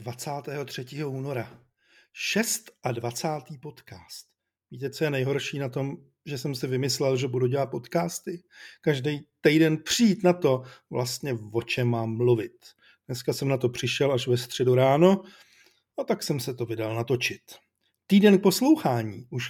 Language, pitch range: Czech, 125-175 Hz